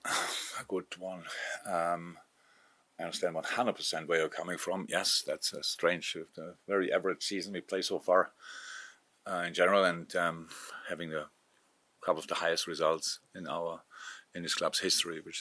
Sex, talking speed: male, 165 wpm